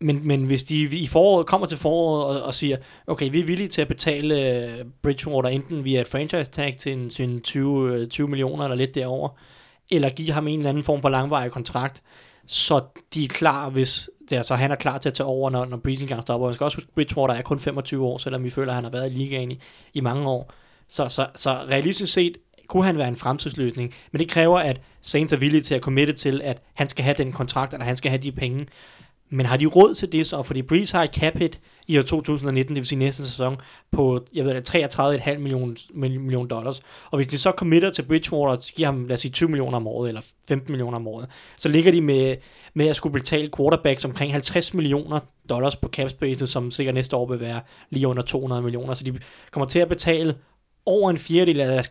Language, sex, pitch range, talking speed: Danish, male, 130-155 Hz, 230 wpm